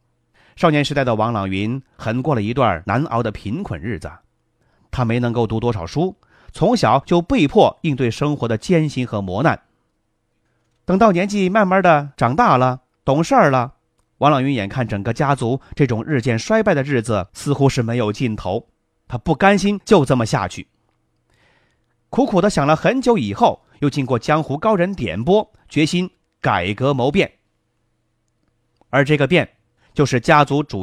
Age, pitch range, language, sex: 30-49, 115-170 Hz, Chinese, male